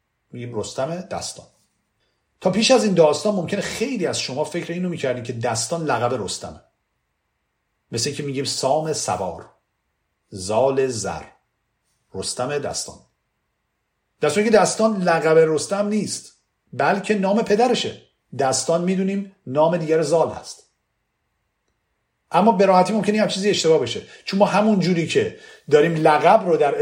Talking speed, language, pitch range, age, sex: 135 wpm, Persian, 120-180 Hz, 50-69, male